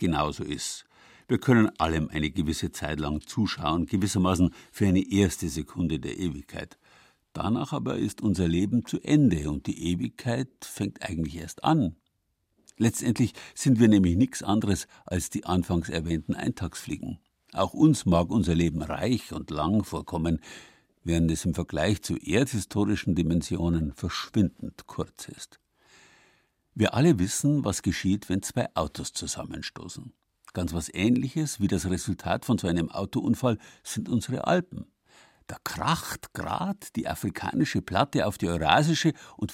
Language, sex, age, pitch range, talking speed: German, male, 60-79, 85-120 Hz, 140 wpm